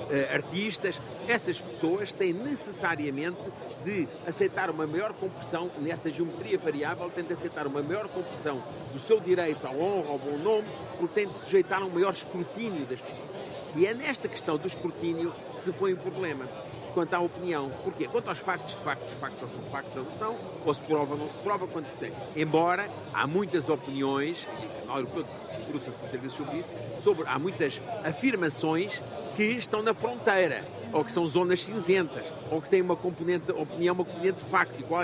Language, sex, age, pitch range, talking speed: Portuguese, male, 50-69, 155-190 Hz, 185 wpm